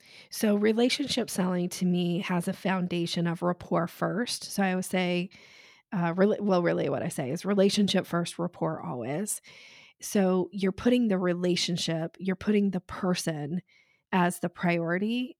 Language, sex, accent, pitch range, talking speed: English, female, American, 175-200 Hz, 150 wpm